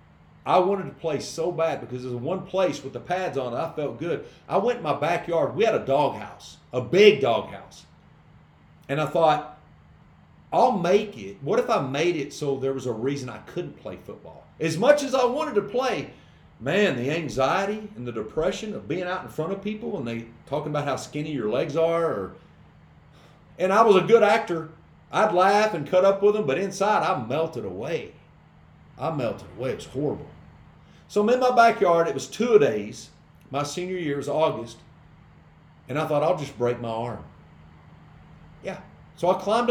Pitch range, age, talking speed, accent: 135-190 Hz, 40-59, 195 wpm, American